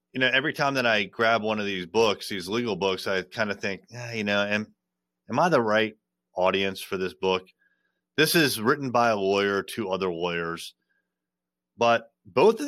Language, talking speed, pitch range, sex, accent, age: English, 195 wpm, 95-125 Hz, male, American, 30-49